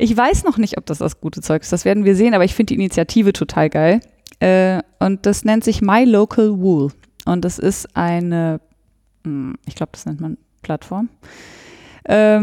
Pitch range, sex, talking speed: 160-205 Hz, female, 185 wpm